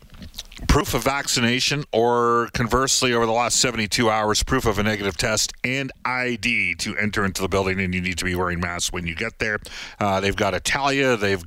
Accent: American